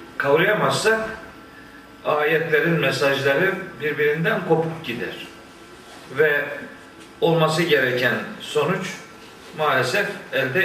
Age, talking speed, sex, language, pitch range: 50-69, 70 wpm, male, Turkish, 140-190 Hz